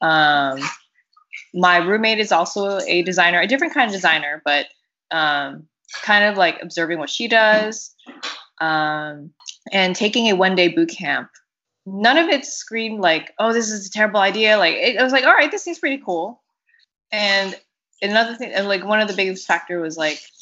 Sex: female